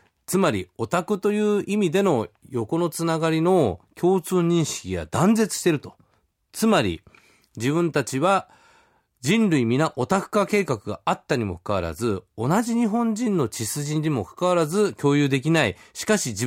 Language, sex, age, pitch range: Japanese, male, 40-59, 100-160 Hz